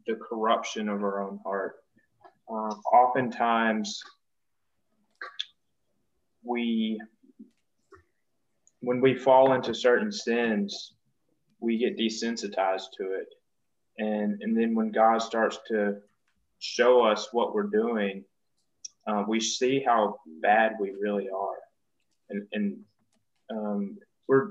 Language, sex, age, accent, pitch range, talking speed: English, male, 20-39, American, 105-130 Hz, 110 wpm